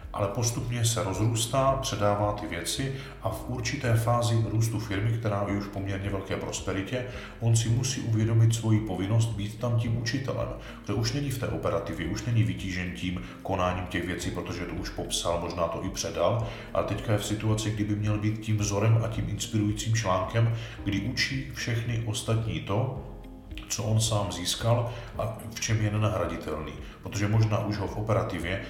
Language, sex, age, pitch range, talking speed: Czech, male, 40-59, 95-110 Hz, 180 wpm